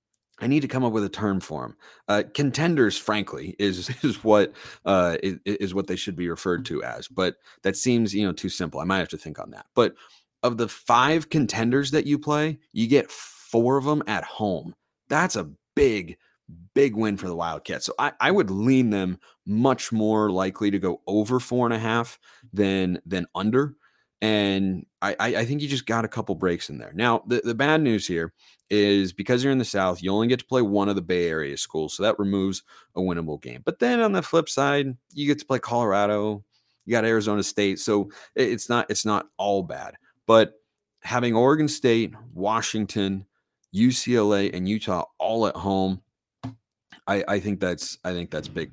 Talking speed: 200 wpm